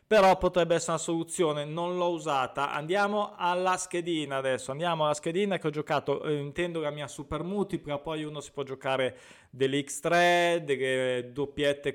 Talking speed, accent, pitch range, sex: 160 wpm, native, 135-165 Hz, male